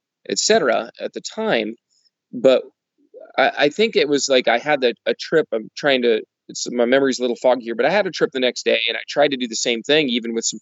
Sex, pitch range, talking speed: male, 120-180 Hz, 255 wpm